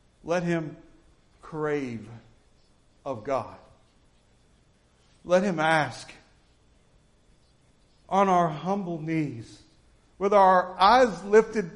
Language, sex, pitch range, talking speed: English, male, 165-220 Hz, 80 wpm